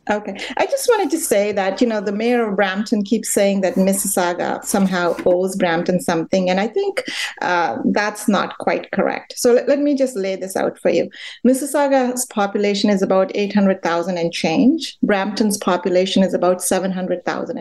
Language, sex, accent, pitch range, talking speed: English, female, Indian, 195-255 Hz, 175 wpm